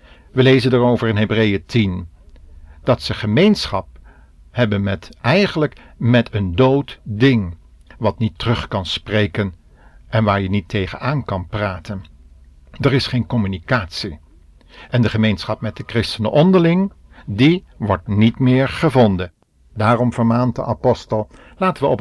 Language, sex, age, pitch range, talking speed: Dutch, male, 50-69, 95-130 Hz, 140 wpm